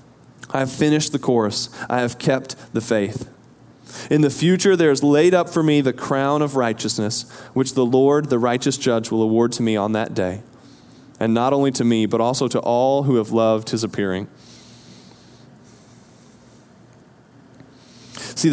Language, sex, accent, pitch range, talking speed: English, male, American, 120-155 Hz, 165 wpm